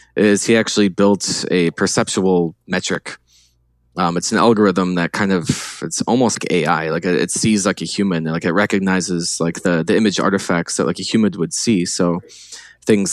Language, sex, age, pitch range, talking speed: English, male, 20-39, 85-100 Hz, 190 wpm